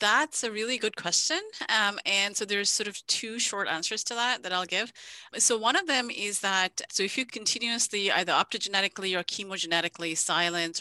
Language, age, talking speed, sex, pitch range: English, 30-49, 190 wpm, female, 170-210 Hz